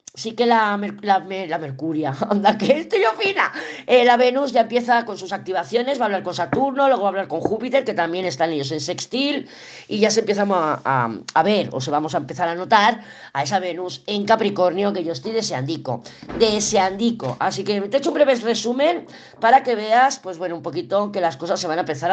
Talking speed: 230 wpm